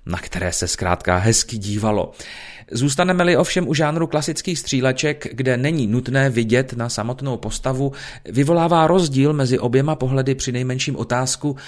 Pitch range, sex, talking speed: 110-140 Hz, male, 140 wpm